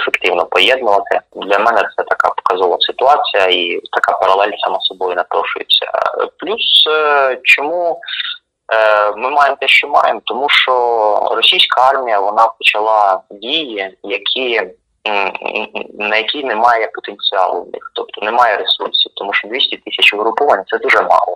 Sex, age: male, 20-39